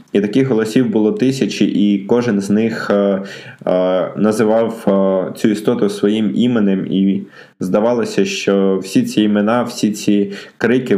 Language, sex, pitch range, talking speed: Ukrainian, male, 95-105 Hz, 140 wpm